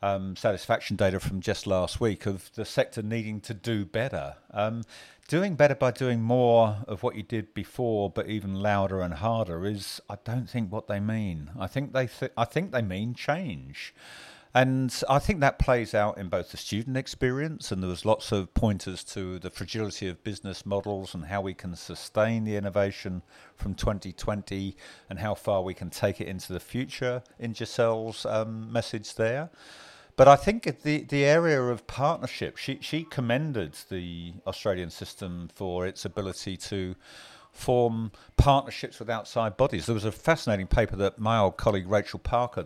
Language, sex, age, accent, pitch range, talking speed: English, male, 50-69, British, 95-120 Hz, 180 wpm